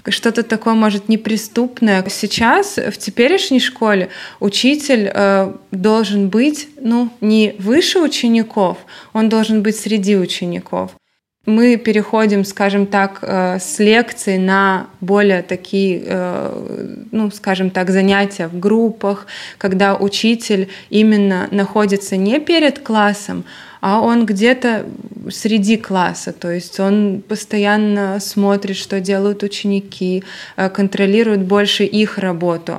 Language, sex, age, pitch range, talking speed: Russian, female, 20-39, 185-215 Hz, 110 wpm